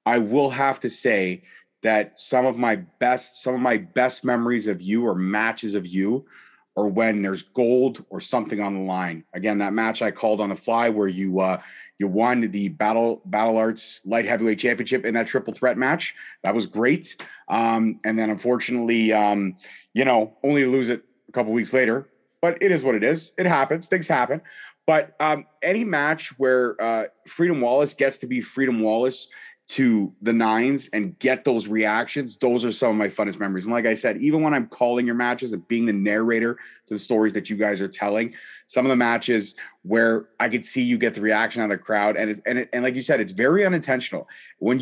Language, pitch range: English, 110-135 Hz